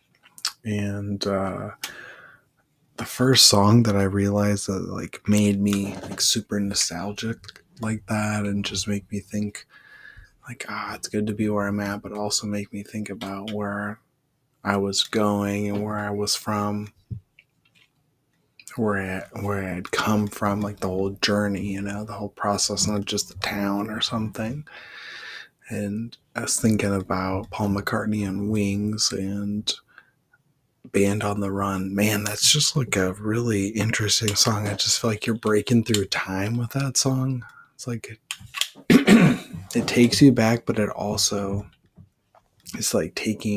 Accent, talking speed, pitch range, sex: American, 160 wpm, 100-110 Hz, male